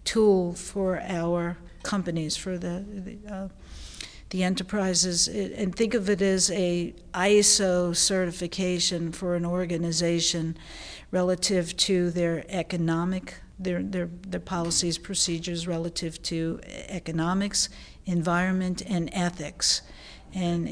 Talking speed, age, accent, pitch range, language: 105 wpm, 50-69, American, 170-190 Hz, English